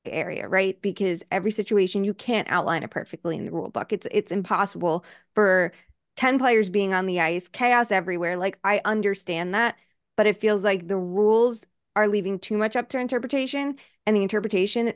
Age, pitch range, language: 20-39, 190-225 Hz, English